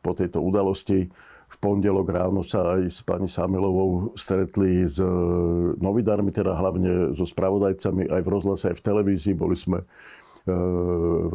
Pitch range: 90-100 Hz